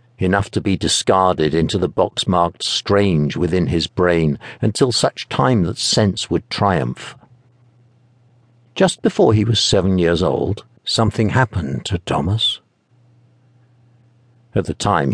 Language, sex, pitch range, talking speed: English, male, 90-120 Hz, 130 wpm